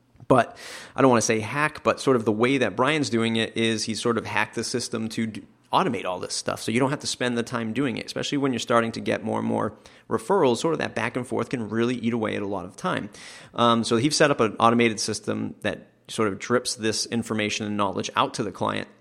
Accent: American